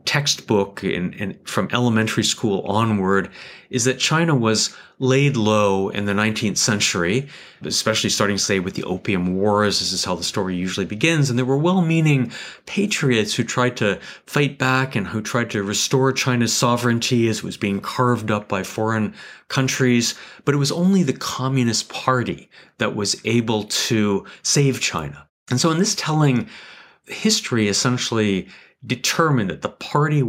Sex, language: male, English